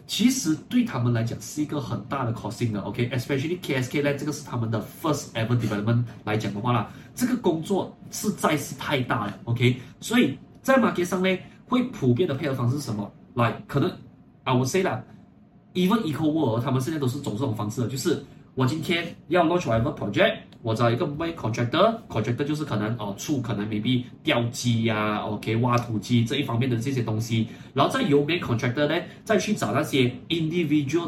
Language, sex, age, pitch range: Chinese, male, 20-39, 120-155 Hz